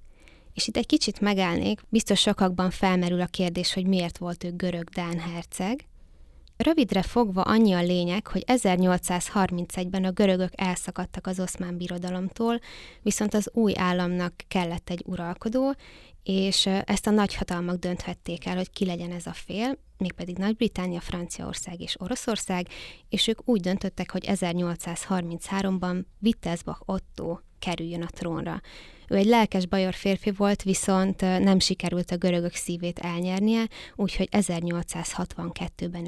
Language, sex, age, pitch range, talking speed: Hungarian, female, 20-39, 175-205 Hz, 130 wpm